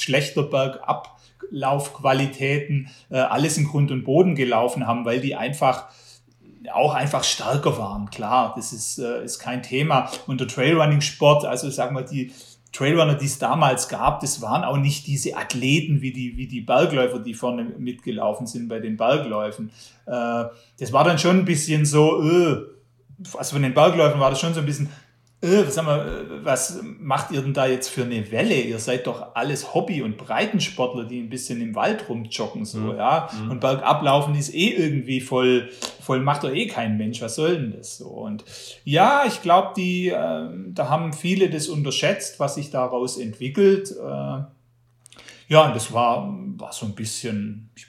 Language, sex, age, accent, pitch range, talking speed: German, male, 30-49, German, 125-150 Hz, 175 wpm